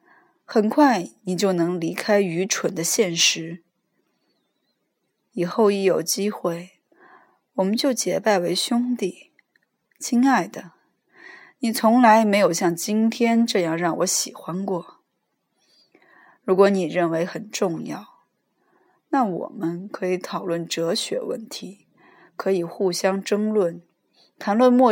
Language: Chinese